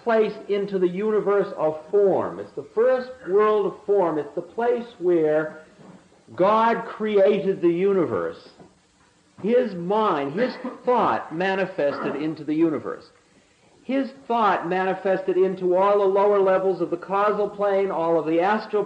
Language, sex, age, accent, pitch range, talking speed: English, male, 50-69, American, 165-220 Hz, 135 wpm